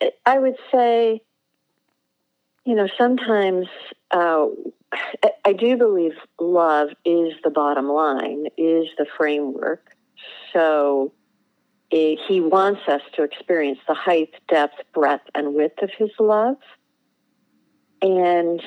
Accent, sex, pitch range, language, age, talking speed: American, female, 150-195 Hz, English, 50-69, 110 wpm